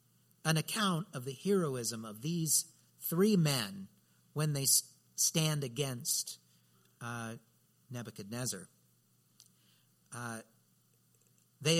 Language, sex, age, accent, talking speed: English, male, 50-69, American, 85 wpm